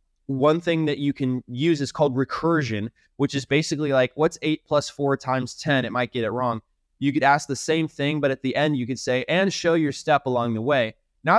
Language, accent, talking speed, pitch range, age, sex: English, American, 235 wpm, 125-155 Hz, 20-39, male